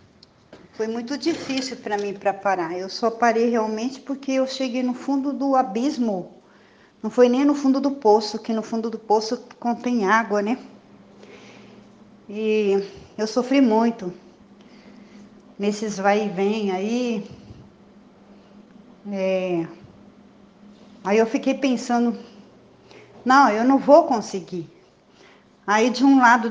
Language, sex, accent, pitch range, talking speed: Portuguese, female, Brazilian, 205-250 Hz, 125 wpm